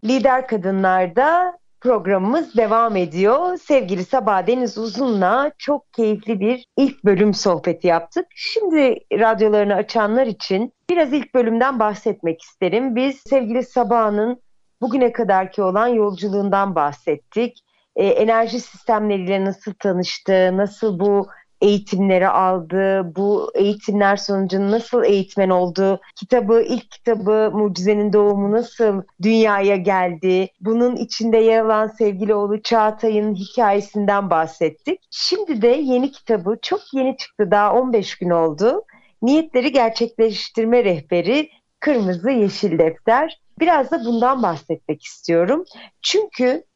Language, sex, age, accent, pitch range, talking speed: Turkish, female, 40-59, native, 195-250 Hz, 115 wpm